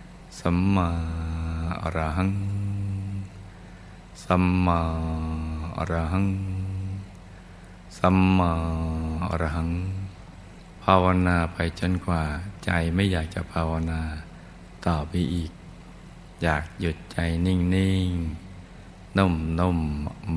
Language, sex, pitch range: Thai, male, 80-95 Hz